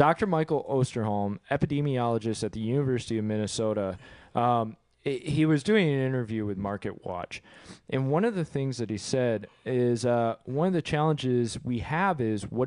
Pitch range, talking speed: 115-155 Hz, 175 wpm